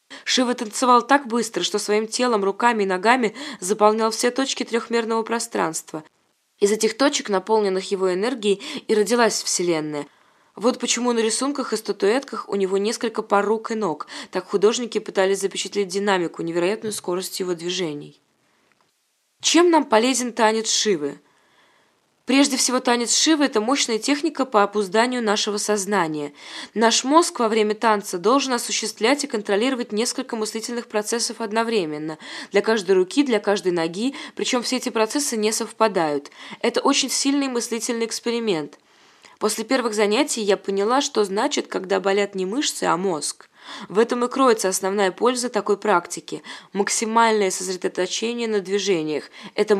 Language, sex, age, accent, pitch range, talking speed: Russian, female, 20-39, native, 195-245 Hz, 140 wpm